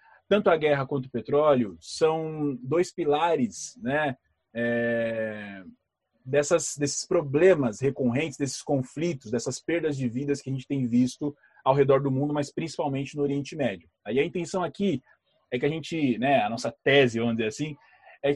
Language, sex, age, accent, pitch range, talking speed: Portuguese, male, 20-39, Brazilian, 120-165 Hz, 165 wpm